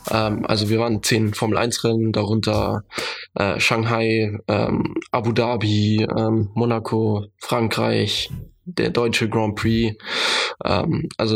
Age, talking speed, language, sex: 20-39, 85 wpm, German, male